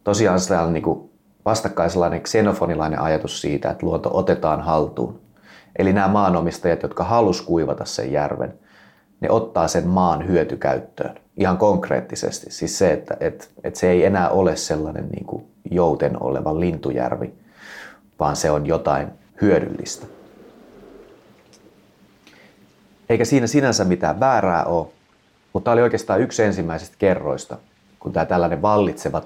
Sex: male